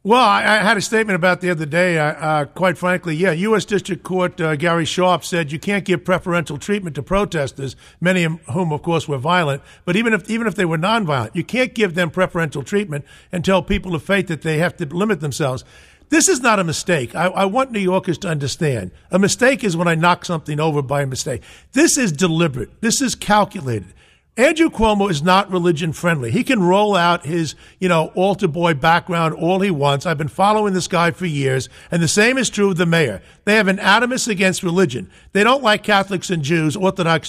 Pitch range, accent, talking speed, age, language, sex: 165-210 Hz, American, 220 wpm, 50-69, English, male